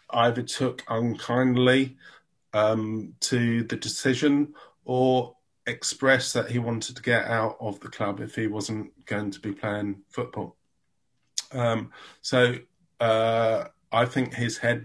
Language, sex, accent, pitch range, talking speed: English, male, British, 110-125 Hz, 135 wpm